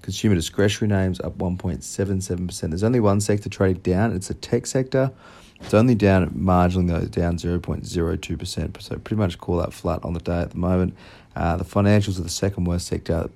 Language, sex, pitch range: English, male, 90-105 Hz